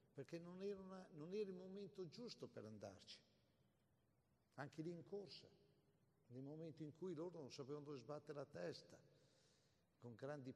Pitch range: 115-140 Hz